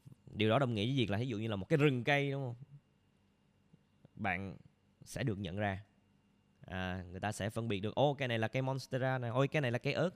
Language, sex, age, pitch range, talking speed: Vietnamese, male, 20-39, 95-130 Hz, 260 wpm